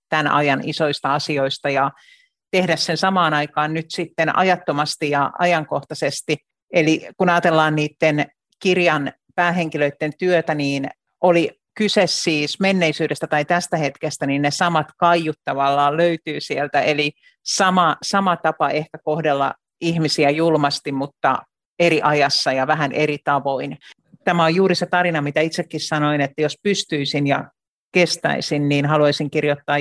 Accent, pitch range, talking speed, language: native, 145-165 Hz, 135 wpm, Finnish